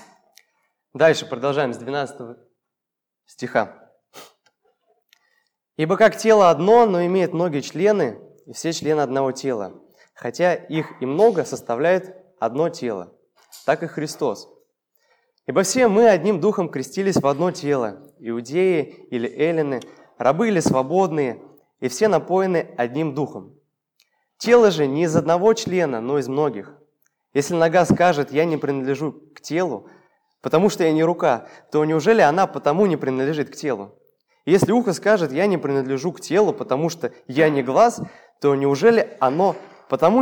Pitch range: 140-195 Hz